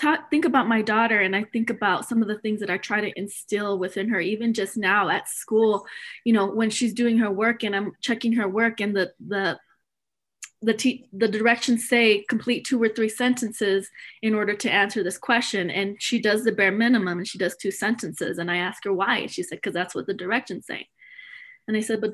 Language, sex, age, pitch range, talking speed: English, female, 20-39, 205-250 Hz, 230 wpm